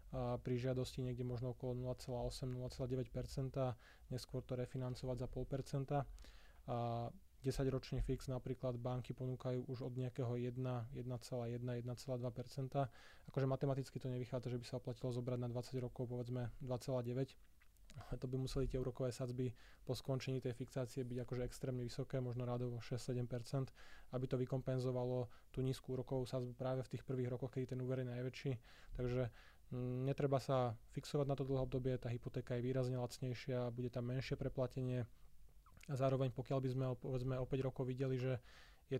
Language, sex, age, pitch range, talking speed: Slovak, male, 20-39, 125-130 Hz, 155 wpm